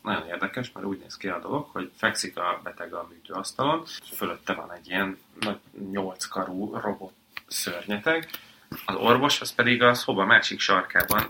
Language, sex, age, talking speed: Hungarian, male, 30-49, 165 wpm